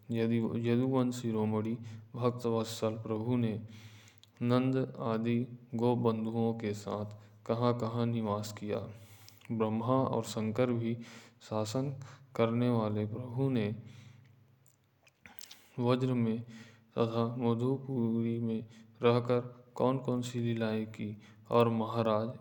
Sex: male